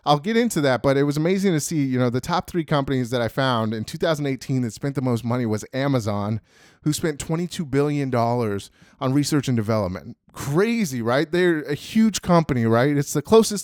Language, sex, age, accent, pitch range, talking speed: English, male, 30-49, American, 130-170 Hz, 200 wpm